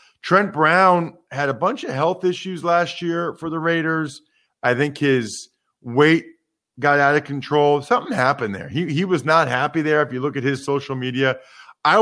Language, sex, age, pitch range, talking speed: English, male, 40-59, 130-180 Hz, 190 wpm